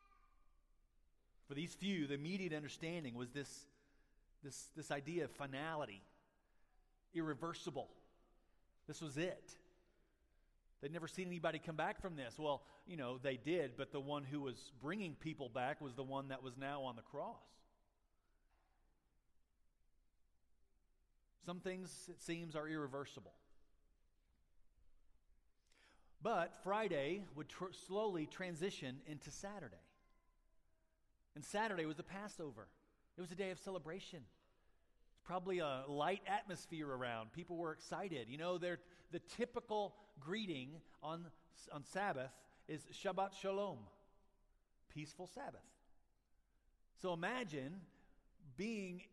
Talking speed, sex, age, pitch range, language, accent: 120 wpm, male, 40-59, 140-190 Hz, English, American